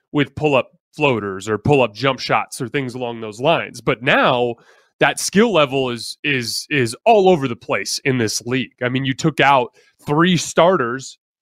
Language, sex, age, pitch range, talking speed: English, male, 20-39, 130-165 Hz, 190 wpm